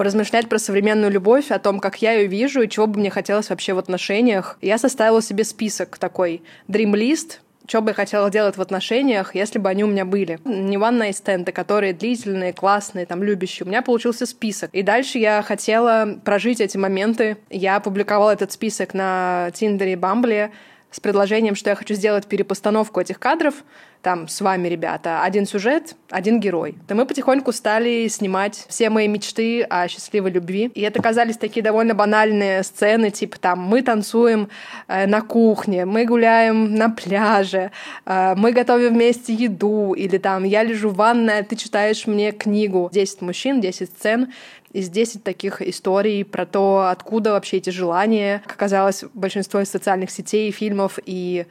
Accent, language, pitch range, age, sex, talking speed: native, Russian, 190-220 Hz, 20-39, female, 170 wpm